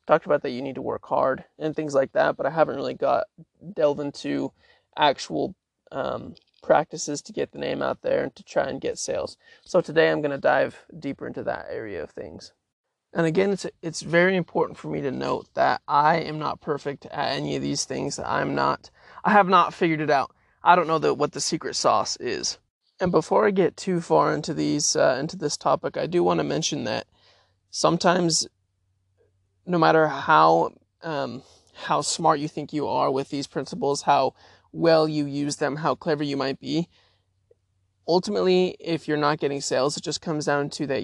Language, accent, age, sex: English, American, 20-39, male